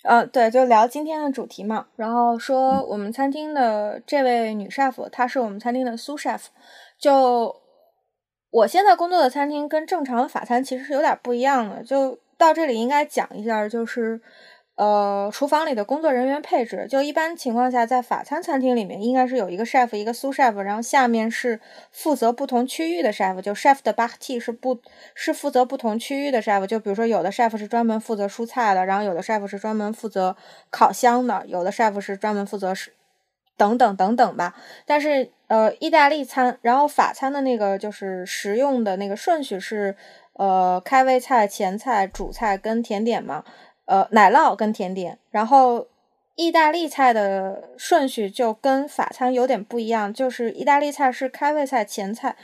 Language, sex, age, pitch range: Chinese, female, 20-39, 210-270 Hz